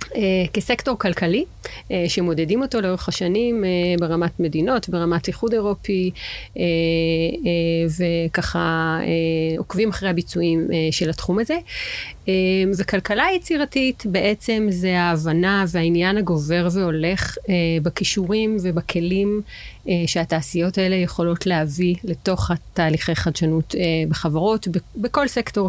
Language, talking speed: Hebrew, 90 wpm